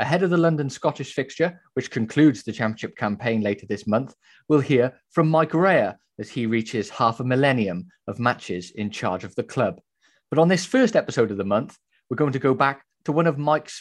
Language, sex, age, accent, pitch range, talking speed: English, male, 30-49, British, 110-150 Hz, 215 wpm